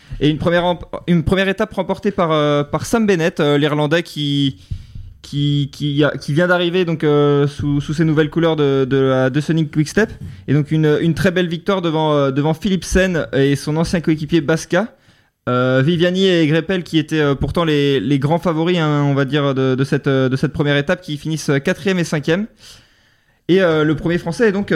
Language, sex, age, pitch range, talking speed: French, male, 20-39, 140-170 Hz, 190 wpm